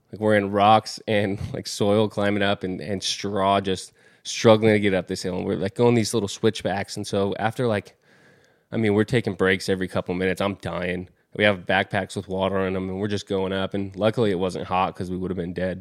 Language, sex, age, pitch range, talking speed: English, male, 20-39, 95-115 Hz, 240 wpm